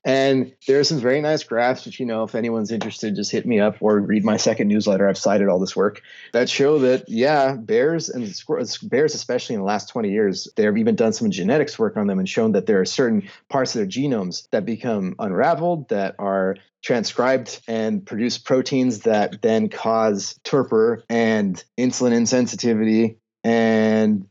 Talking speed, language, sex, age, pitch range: 190 wpm, English, male, 30-49, 115-185 Hz